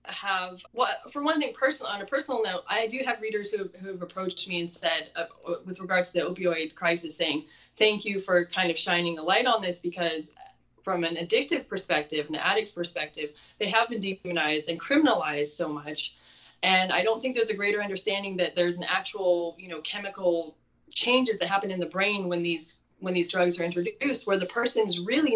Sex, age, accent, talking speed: female, 20-39, American, 205 wpm